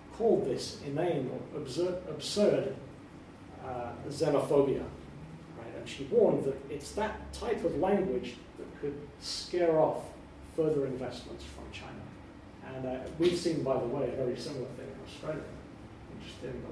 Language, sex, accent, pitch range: English, male, British, 125-170 Hz